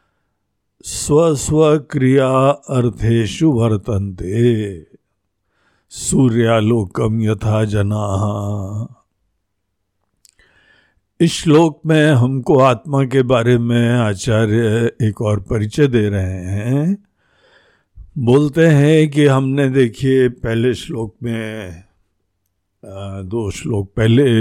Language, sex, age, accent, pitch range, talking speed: Hindi, male, 50-69, native, 105-140 Hz, 85 wpm